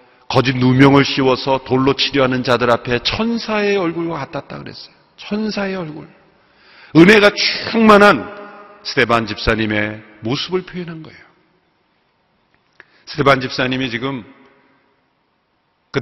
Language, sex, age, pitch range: Korean, male, 40-59, 130-165 Hz